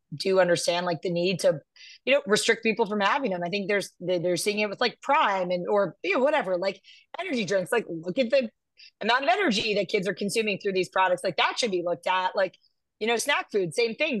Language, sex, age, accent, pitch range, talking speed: English, female, 30-49, American, 190-235 Hz, 240 wpm